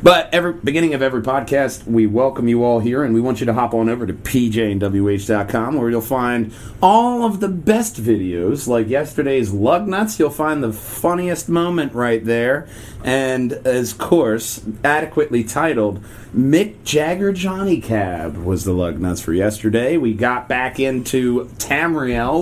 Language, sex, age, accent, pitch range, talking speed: English, male, 30-49, American, 110-155 Hz, 160 wpm